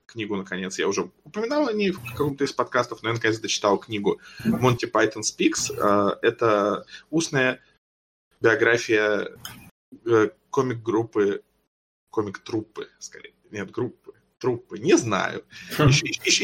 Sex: male